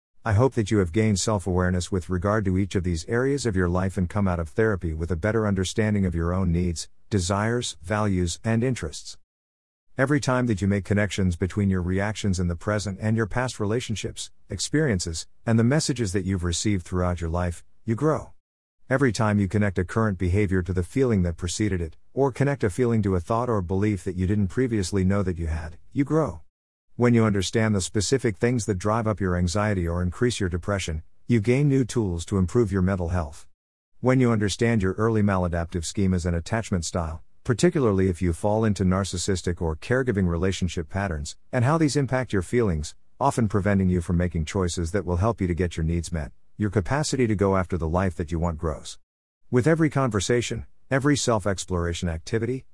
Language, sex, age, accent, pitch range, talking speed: English, male, 50-69, American, 90-115 Hz, 200 wpm